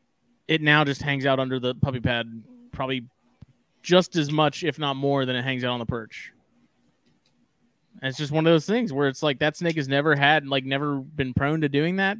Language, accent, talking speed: English, American, 220 wpm